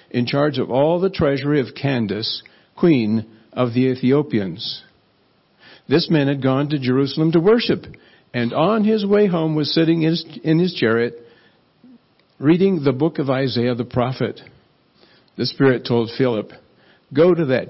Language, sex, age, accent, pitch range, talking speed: English, male, 60-79, American, 125-180 Hz, 150 wpm